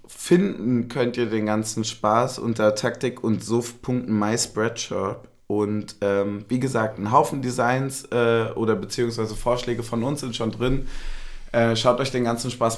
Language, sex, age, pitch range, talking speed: German, male, 20-39, 110-125 Hz, 150 wpm